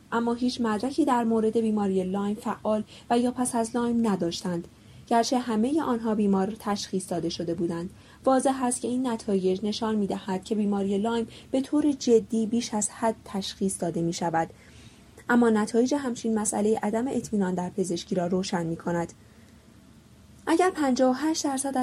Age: 20-39